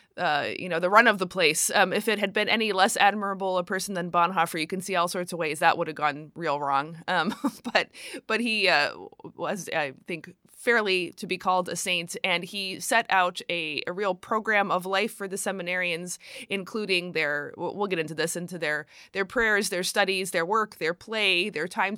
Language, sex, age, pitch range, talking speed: English, female, 20-39, 175-220 Hz, 215 wpm